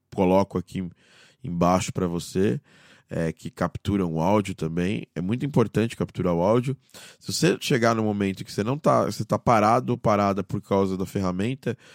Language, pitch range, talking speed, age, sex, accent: Portuguese, 90-115 Hz, 175 wpm, 20-39, male, Brazilian